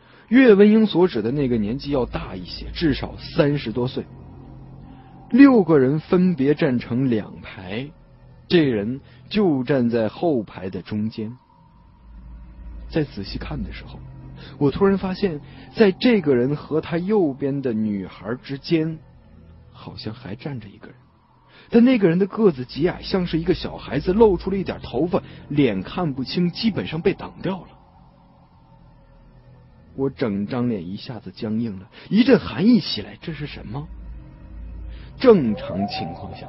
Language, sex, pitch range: Chinese, male, 110-180 Hz